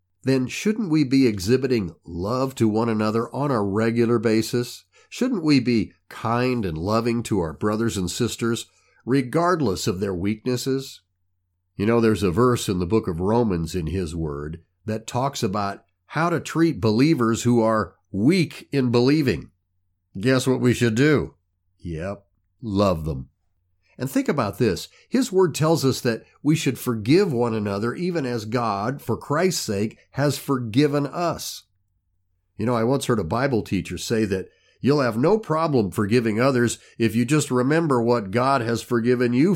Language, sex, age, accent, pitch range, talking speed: English, male, 50-69, American, 95-135 Hz, 165 wpm